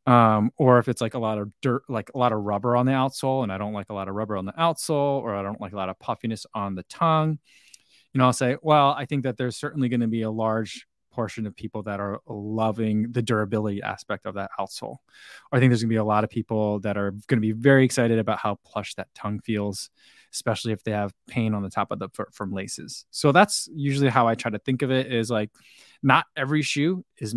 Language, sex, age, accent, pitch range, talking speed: English, male, 20-39, American, 105-130 Hz, 255 wpm